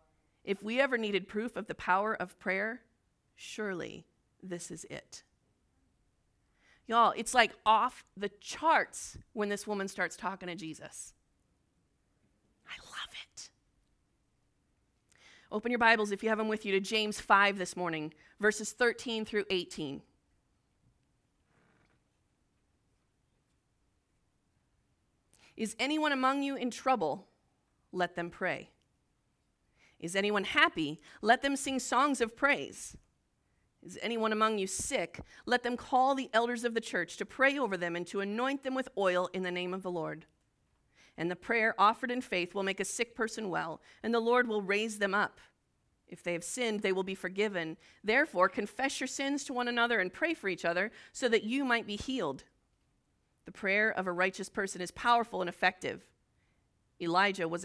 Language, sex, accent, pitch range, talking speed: English, female, American, 180-235 Hz, 160 wpm